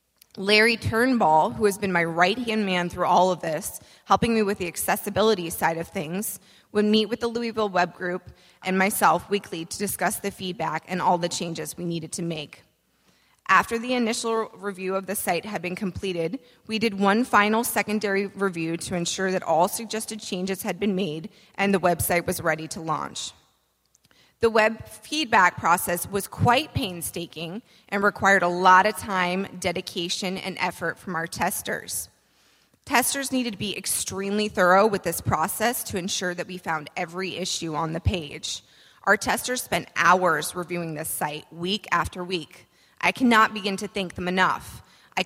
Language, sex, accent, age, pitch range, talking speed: English, female, American, 30-49, 175-215 Hz, 175 wpm